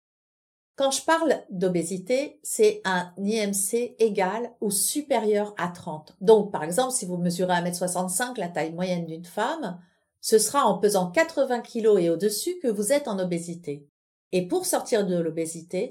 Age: 50-69